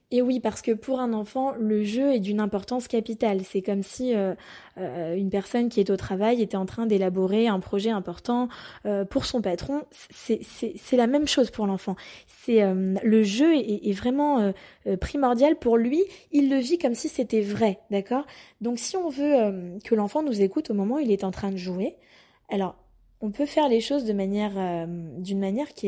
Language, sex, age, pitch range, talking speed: French, female, 20-39, 200-275 Hz, 215 wpm